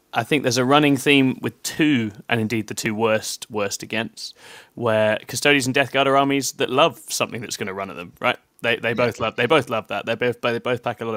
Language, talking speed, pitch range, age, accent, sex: English, 255 wpm, 105-120 Hz, 20-39, British, male